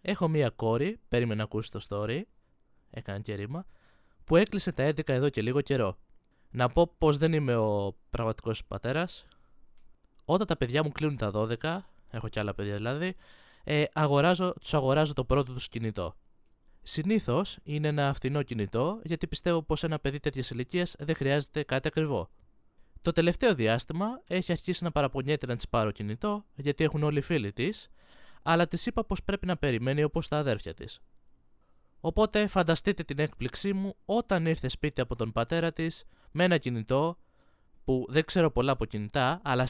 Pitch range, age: 120-170 Hz, 20-39